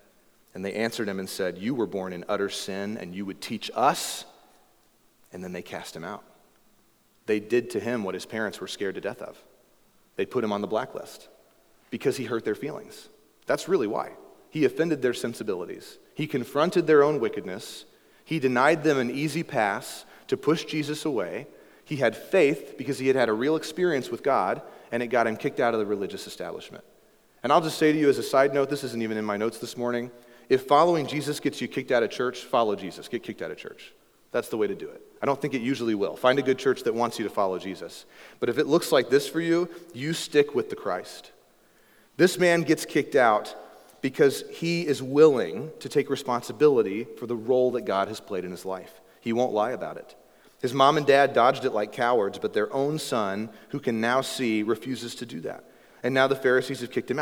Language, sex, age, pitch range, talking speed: English, male, 30-49, 115-155 Hz, 225 wpm